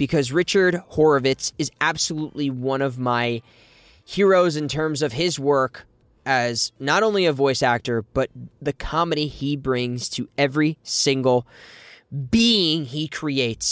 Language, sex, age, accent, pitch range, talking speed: English, male, 10-29, American, 115-150 Hz, 135 wpm